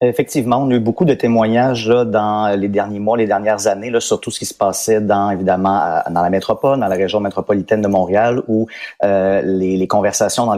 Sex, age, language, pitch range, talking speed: male, 30-49, French, 95-115 Hz, 225 wpm